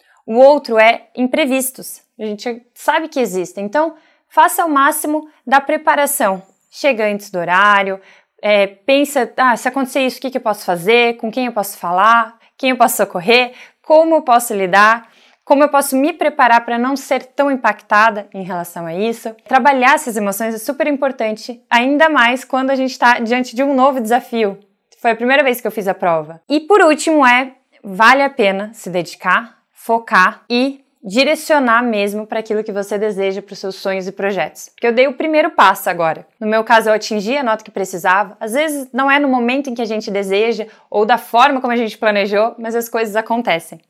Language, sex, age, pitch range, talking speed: Portuguese, female, 20-39, 210-270 Hz, 195 wpm